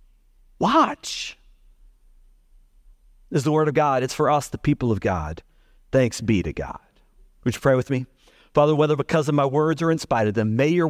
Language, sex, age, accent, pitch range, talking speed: English, male, 50-69, American, 110-170 Hz, 200 wpm